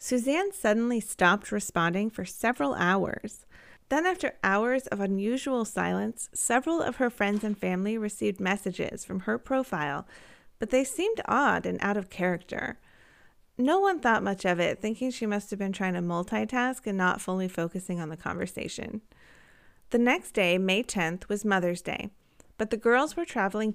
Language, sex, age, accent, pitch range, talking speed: English, female, 30-49, American, 185-245 Hz, 165 wpm